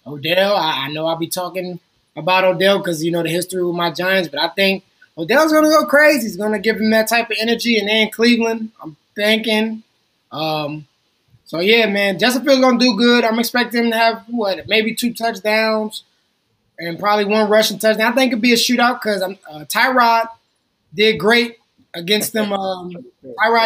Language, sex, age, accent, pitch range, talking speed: English, male, 20-39, American, 185-225 Hz, 200 wpm